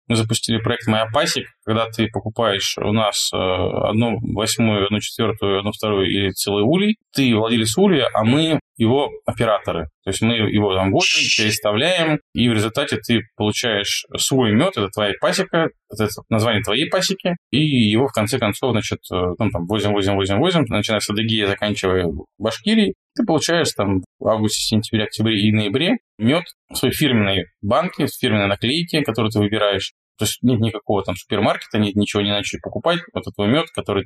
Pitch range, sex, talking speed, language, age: 100-125 Hz, male, 175 wpm, Russian, 20-39